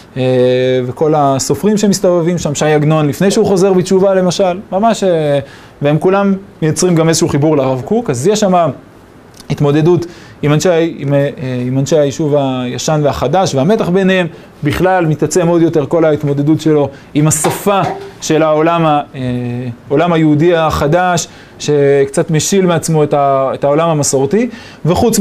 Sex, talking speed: male, 130 wpm